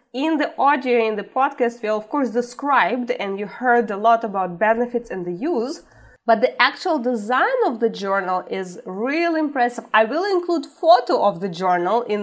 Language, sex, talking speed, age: English, female, 185 wpm, 20-39